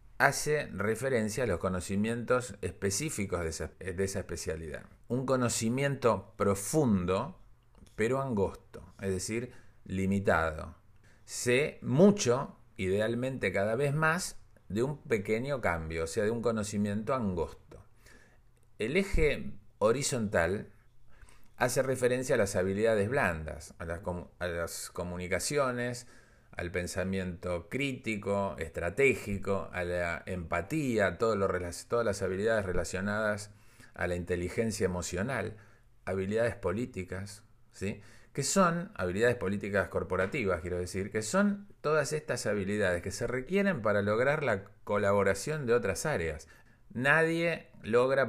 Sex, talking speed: male, 110 wpm